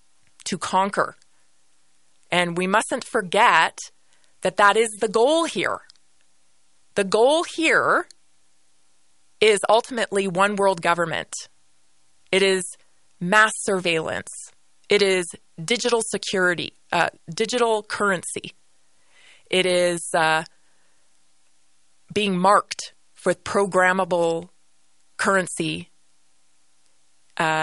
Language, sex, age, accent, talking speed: English, female, 20-39, American, 85 wpm